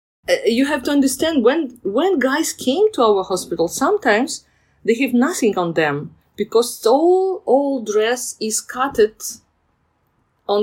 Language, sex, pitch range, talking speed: English, female, 180-270 Hz, 140 wpm